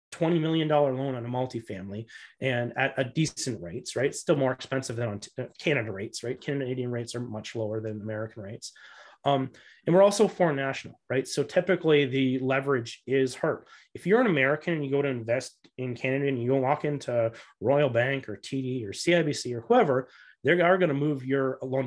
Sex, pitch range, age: male, 120-145 Hz, 30-49